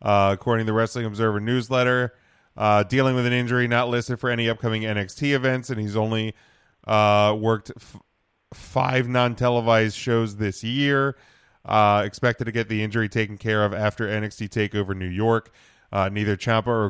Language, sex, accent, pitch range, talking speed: English, male, American, 100-125 Hz, 170 wpm